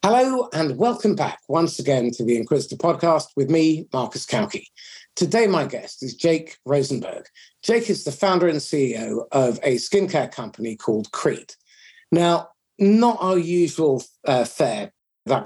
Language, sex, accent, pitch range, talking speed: English, male, British, 130-175 Hz, 150 wpm